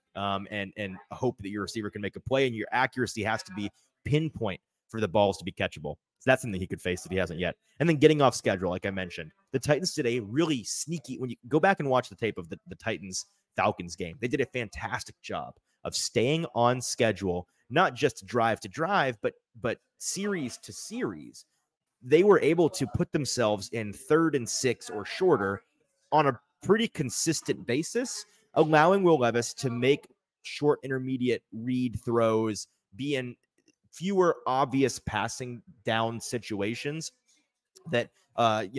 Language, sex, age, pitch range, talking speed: English, male, 30-49, 105-145 Hz, 180 wpm